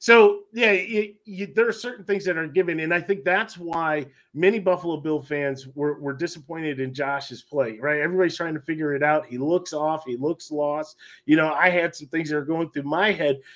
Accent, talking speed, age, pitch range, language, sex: American, 225 wpm, 30-49, 150-195 Hz, English, male